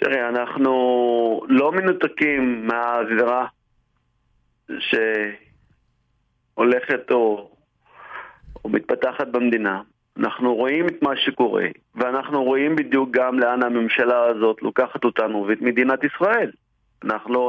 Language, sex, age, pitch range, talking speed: Hebrew, male, 40-59, 120-145 Hz, 95 wpm